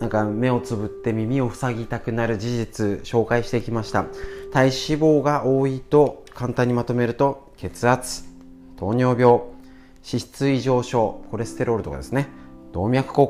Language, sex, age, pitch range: Japanese, male, 40-59, 105-145 Hz